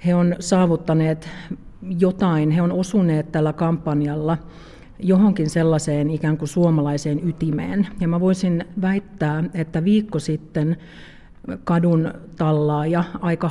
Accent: native